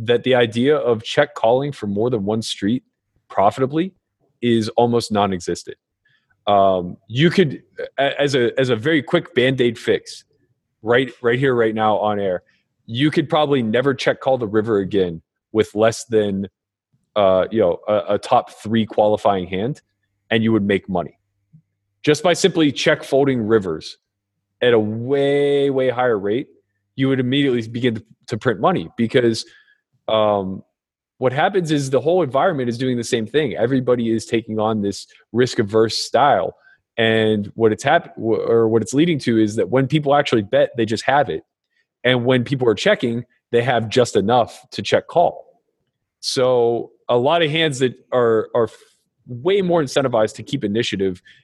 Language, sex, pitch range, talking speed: English, male, 110-135 Hz, 170 wpm